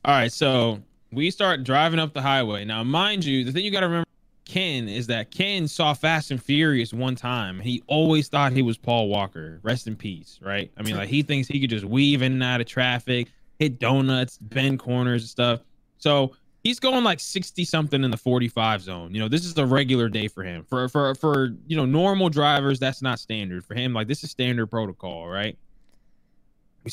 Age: 20-39